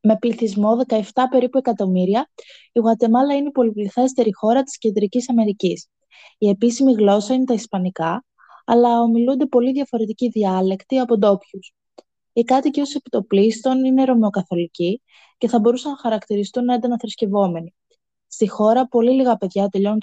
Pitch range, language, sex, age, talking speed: 195-245 Hz, Greek, female, 20-39, 135 wpm